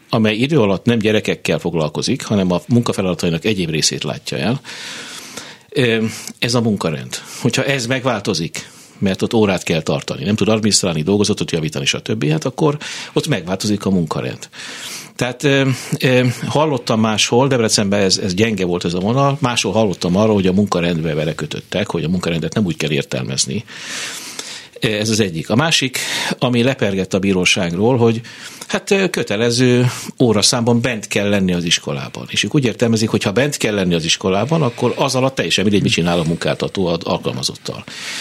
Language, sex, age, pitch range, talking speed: Hungarian, male, 60-79, 100-125 Hz, 155 wpm